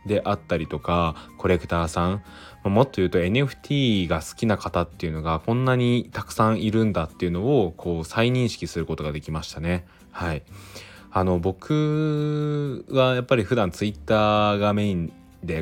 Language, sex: Japanese, male